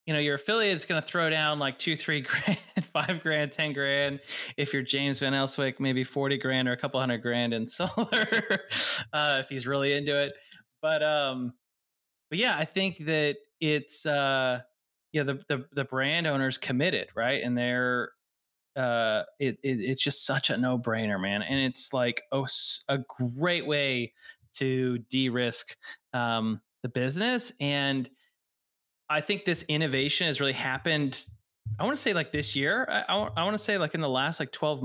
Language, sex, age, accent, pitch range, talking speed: English, male, 20-39, American, 125-155 Hz, 185 wpm